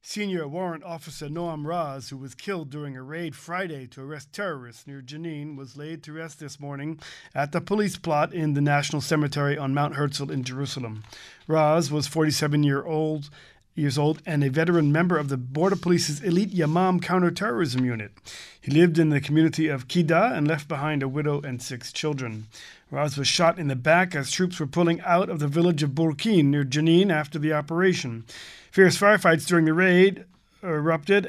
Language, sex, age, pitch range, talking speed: English, male, 40-59, 145-175 Hz, 185 wpm